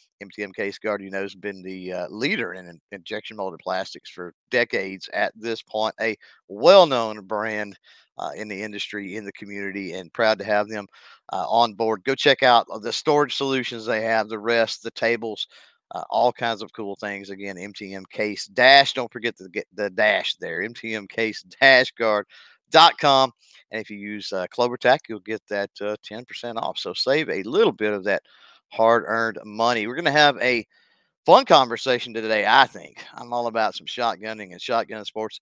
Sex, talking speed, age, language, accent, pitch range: male, 185 wpm, 50-69, English, American, 100-120 Hz